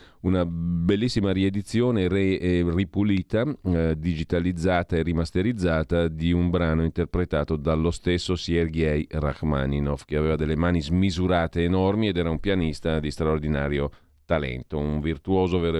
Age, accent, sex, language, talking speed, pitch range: 40-59, native, male, Italian, 120 wpm, 80-100 Hz